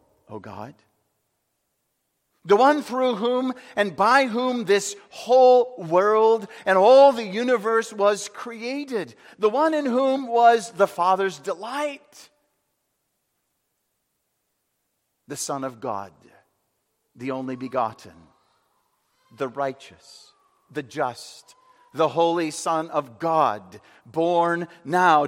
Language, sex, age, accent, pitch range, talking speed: English, male, 50-69, American, 150-250 Hz, 105 wpm